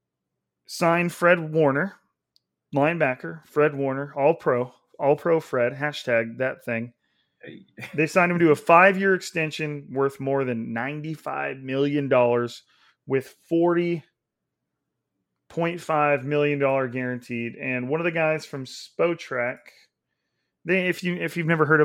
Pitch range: 125-160 Hz